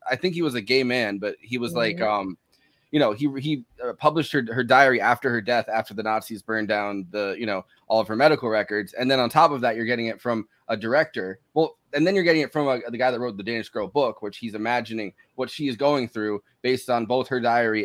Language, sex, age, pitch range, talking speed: English, male, 20-39, 110-135 Hz, 260 wpm